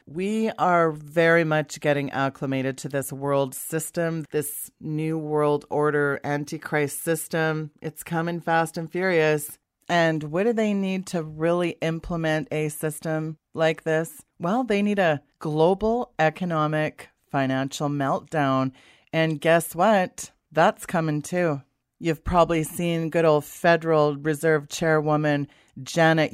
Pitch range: 150-175 Hz